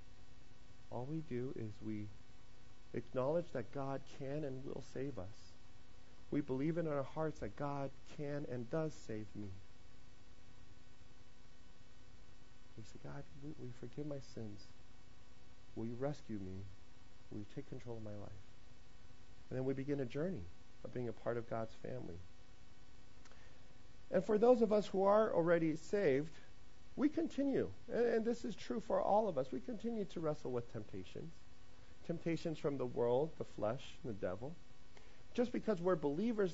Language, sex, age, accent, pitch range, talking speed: English, male, 40-59, American, 125-185 Hz, 155 wpm